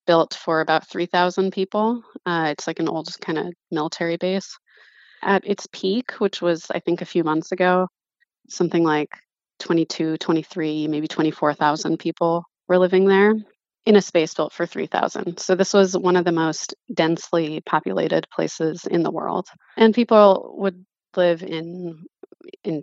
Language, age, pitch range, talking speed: English, 20-39, 160-185 Hz, 160 wpm